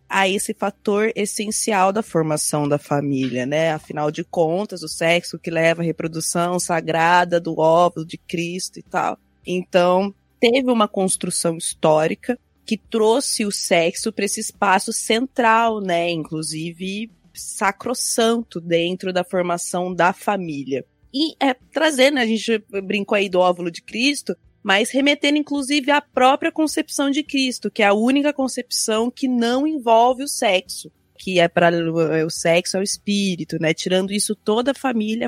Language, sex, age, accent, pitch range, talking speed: Portuguese, female, 20-39, Brazilian, 170-230 Hz, 155 wpm